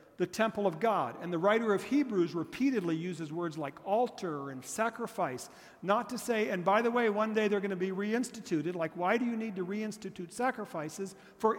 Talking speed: 200 wpm